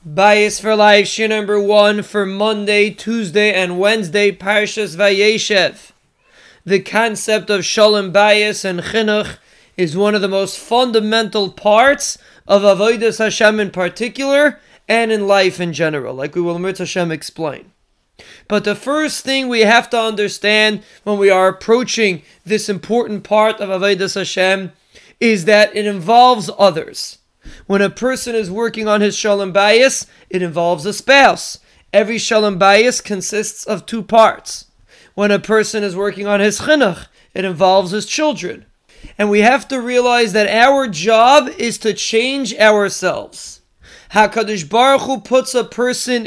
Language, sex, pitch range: English, male, 200-225 Hz